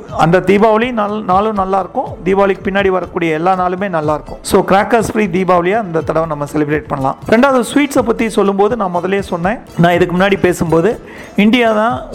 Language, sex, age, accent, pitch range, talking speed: Tamil, male, 40-59, native, 165-205 Hz, 160 wpm